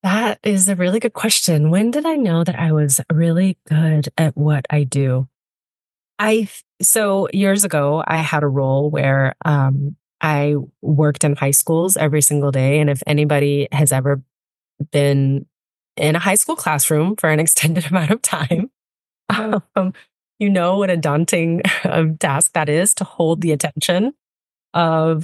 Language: English